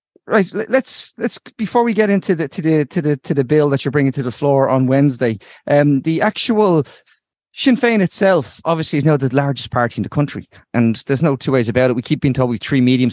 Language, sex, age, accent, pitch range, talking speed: English, male, 30-49, Irish, 120-150 Hz, 240 wpm